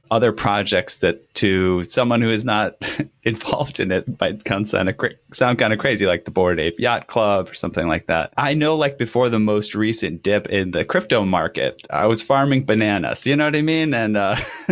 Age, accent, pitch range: 20-39, American, 95-115 Hz